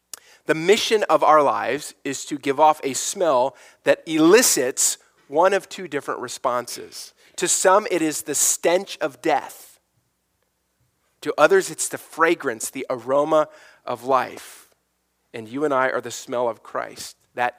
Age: 40-59